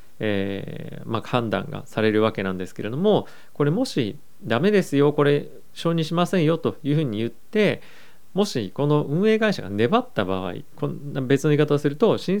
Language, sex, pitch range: Japanese, male, 110-160 Hz